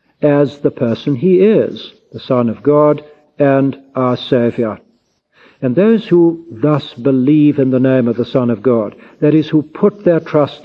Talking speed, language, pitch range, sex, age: 175 wpm, English, 120-155 Hz, male, 60-79